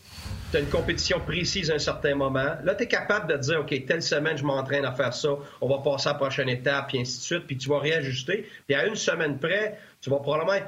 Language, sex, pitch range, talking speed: French, male, 140-195 Hz, 255 wpm